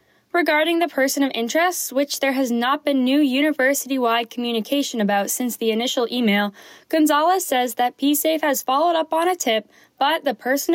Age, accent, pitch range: 10-29, American, 230-300 Hz